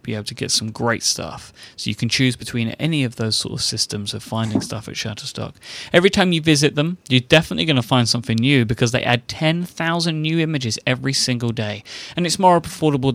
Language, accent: English, British